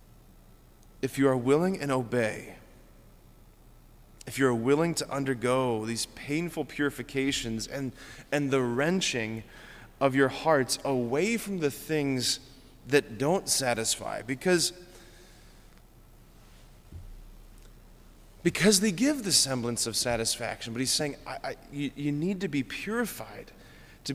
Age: 20-39